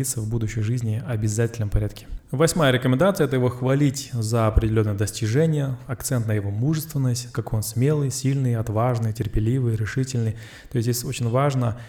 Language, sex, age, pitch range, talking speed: Russian, male, 20-39, 110-130 Hz, 145 wpm